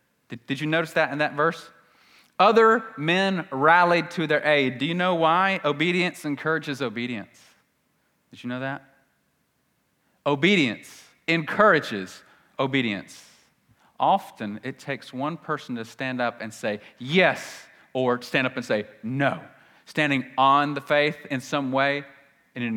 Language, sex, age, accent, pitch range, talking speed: English, male, 30-49, American, 105-150 Hz, 140 wpm